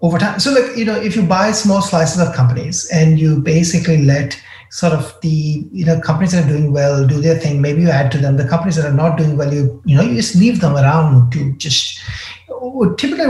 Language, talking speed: English, 240 wpm